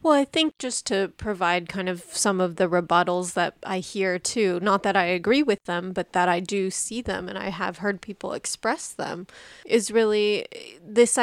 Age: 20-39